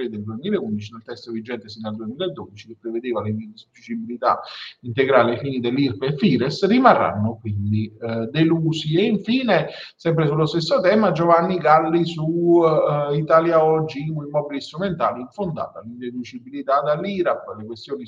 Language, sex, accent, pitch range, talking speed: Italian, male, native, 120-160 Hz, 135 wpm